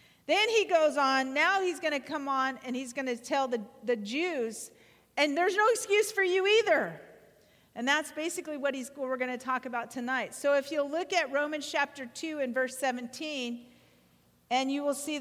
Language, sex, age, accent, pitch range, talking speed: English, female, 40-59, American, 260-315 Hz, 205 wpm